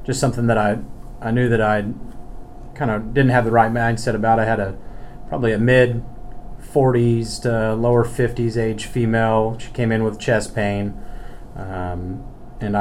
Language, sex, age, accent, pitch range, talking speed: English, male, 30-49, American, 105-120 Hz, 170 wpm